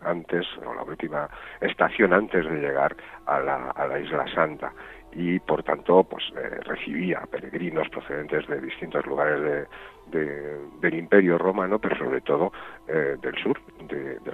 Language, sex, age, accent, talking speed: Spanish, male, 60-79, Spanish, 160 wpm